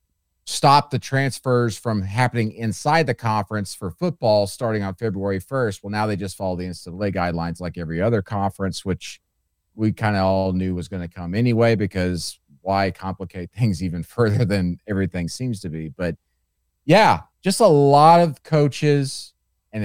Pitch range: 90-120 Hz